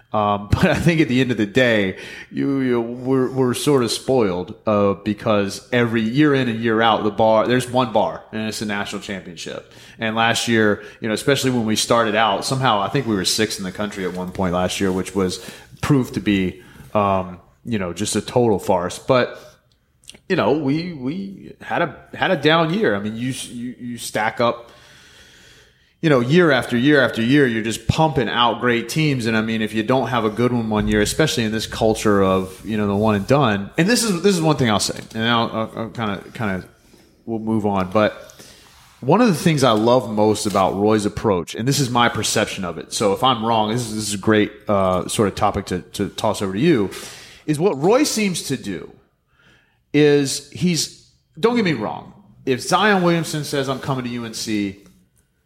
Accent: American